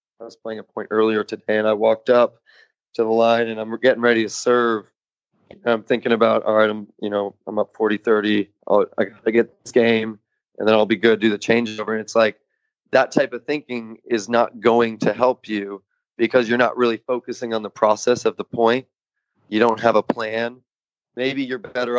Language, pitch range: English, 110-125 Hz